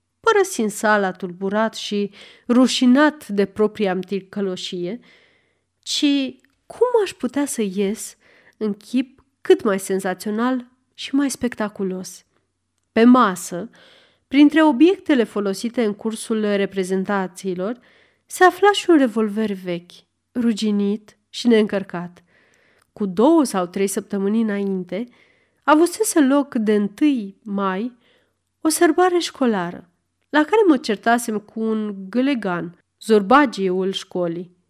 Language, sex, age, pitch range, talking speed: Romanian, female, 30-49, 195-275 Hz, 110 wpm